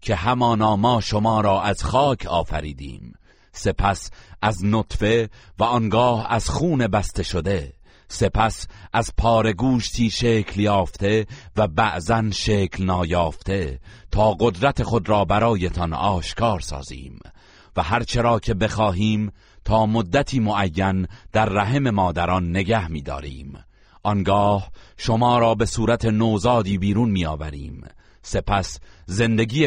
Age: 40-59